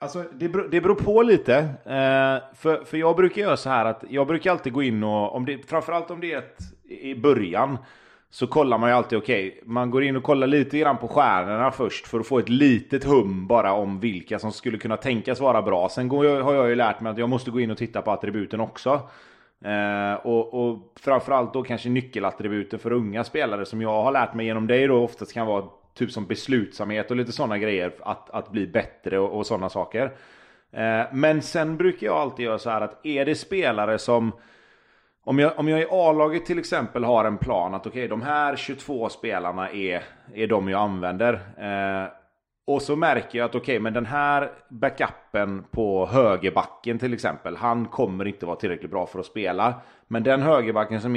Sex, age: male, 30-49